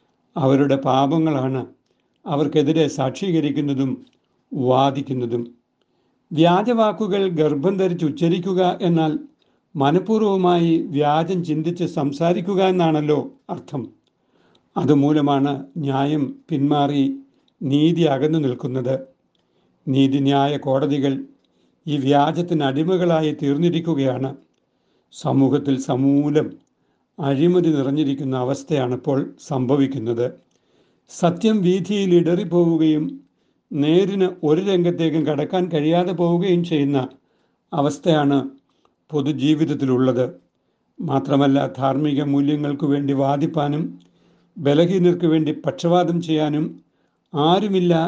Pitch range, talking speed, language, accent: 135-170 Hz, 70 wpm, Malayalam, native